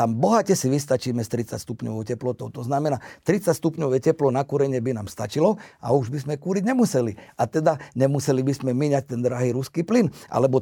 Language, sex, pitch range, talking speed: Slovak, male, 125-170 Hz, 190 wpm